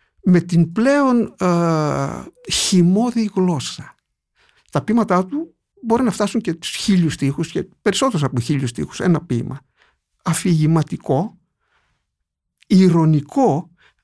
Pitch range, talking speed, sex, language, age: 150-220 Hz, 105 wpm, male, Greek, 60-79